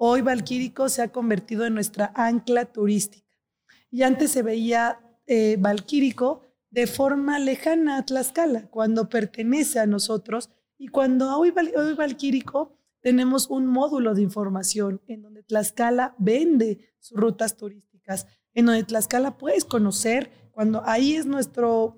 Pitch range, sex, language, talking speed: 215-255 Hz, female, Spanish, 135 wpm